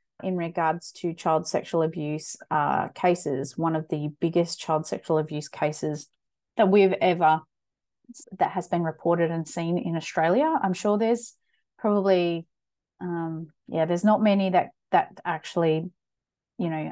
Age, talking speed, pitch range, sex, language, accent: 30-49, 145 wpm, 160-195 Hz, female, English, Australian